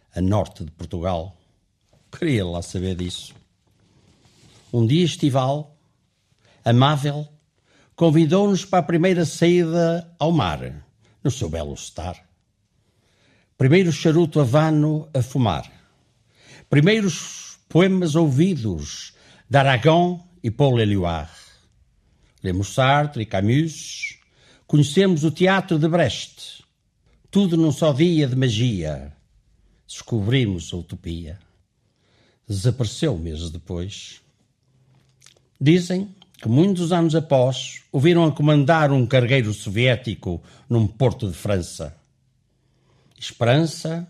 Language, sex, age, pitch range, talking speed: Portuguese, male, 60-79, 100-150 Hz, 100 wpm